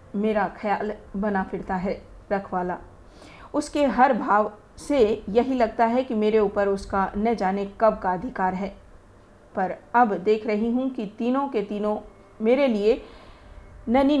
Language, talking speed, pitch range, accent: Hindi, 150 wpm, 195-240 Hz, native